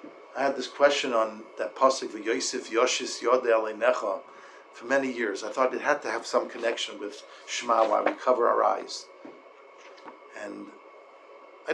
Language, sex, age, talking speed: English, male, 50-69, 140 wpm